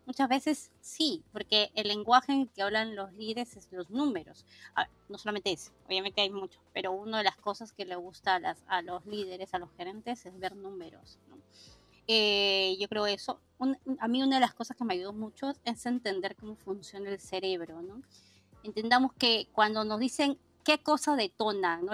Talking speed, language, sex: 200 wpm, Spanish, female